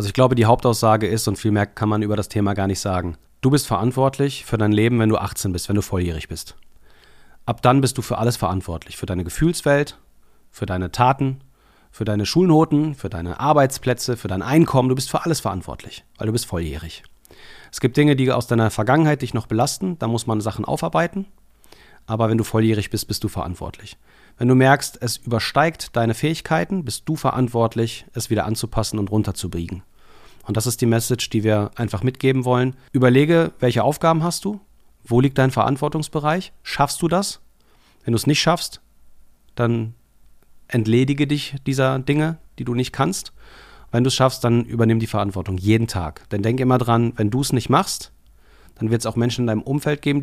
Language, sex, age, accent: German, male, 40-59, German